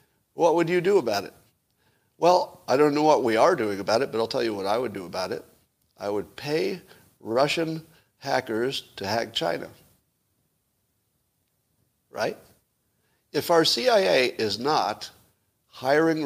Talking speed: 150 wpm